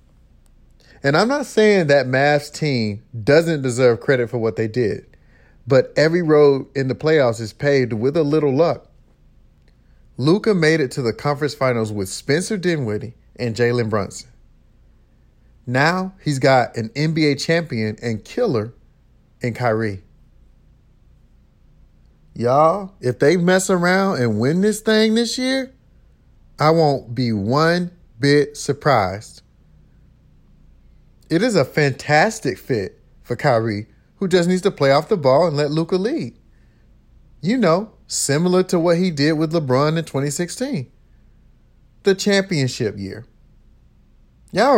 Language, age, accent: English, 40-59, American